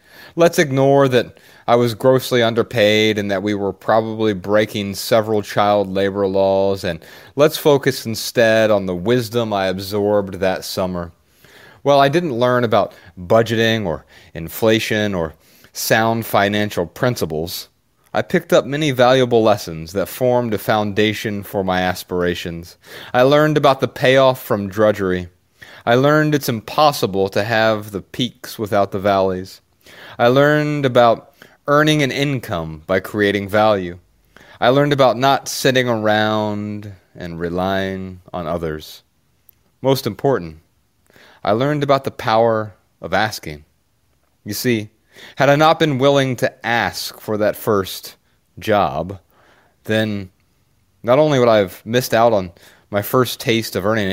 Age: 30-49